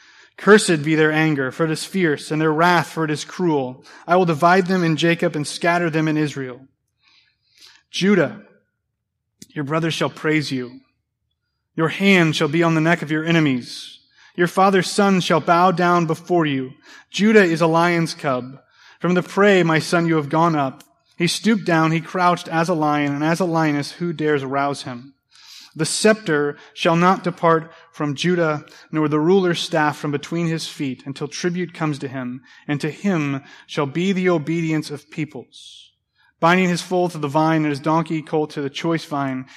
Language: English